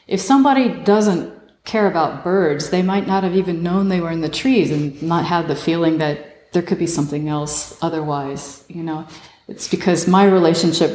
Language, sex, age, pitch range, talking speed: English, female, 40-59, 150-175 Hz, 190 wpm